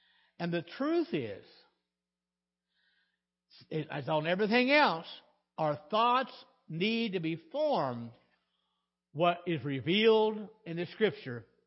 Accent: American